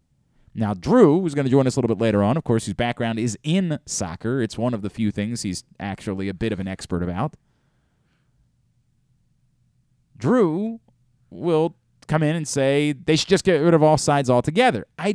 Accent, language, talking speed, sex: American, English, 190 wpm, male